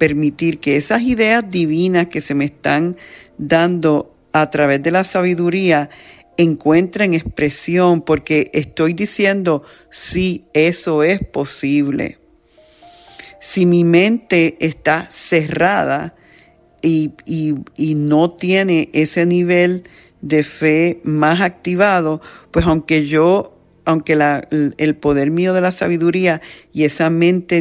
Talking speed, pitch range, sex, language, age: 115 wpm, 150-175 Hz, female, Spanish, 50-69